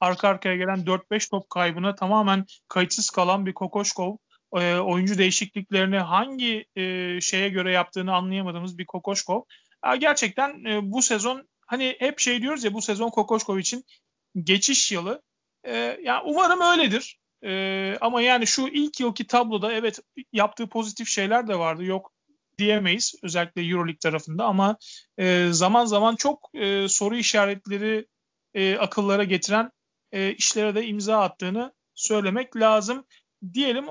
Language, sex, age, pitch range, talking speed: Turkish, male, 40-59, 185-230 Hz, 125 wpm